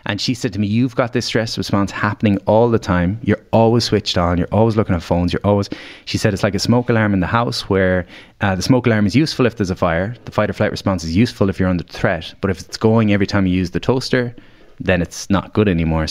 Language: English